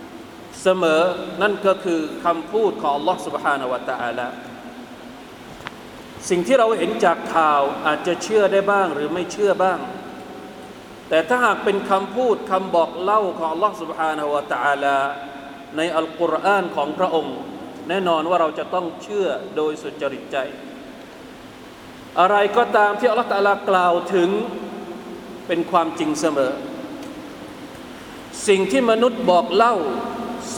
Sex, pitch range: male, 170-215 Hz